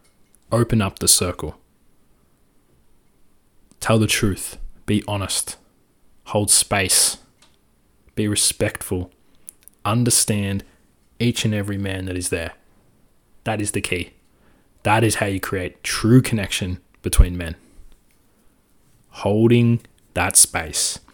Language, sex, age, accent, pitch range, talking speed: English, male, 20-39, Australian, 90-110 Hz, 105 wpm